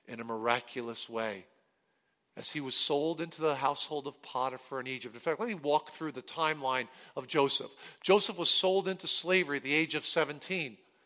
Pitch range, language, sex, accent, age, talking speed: 150-205 Hz, English, male, American, 50-69, 190 wpm